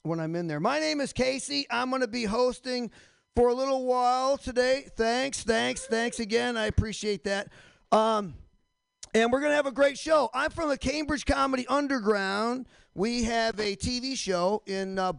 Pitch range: 175-235 Hz